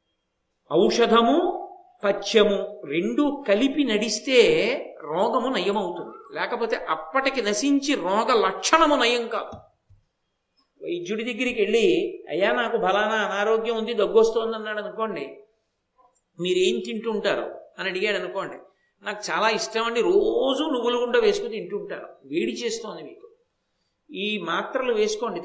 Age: 50-69